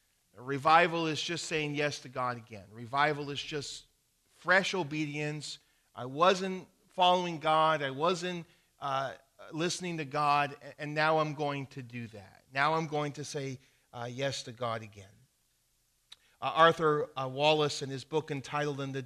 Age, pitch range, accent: 40-59, 135-160 Hz, American